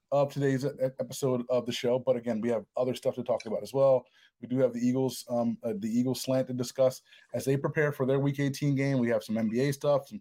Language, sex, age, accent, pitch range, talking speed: English, male, 30-49, American, 120-135 Hz, 255 wpm